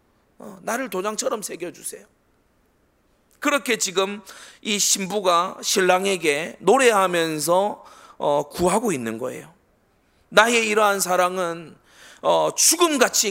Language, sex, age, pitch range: Korean, male, 30-49, 160-245 Hz